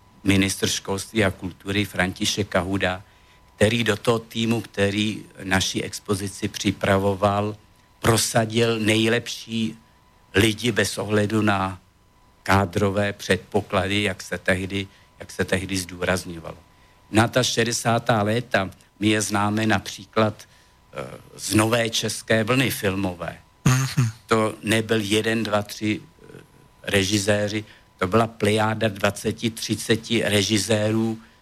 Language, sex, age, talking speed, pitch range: Slovak, male, 60-79, 100 wpm, 100-115 Hz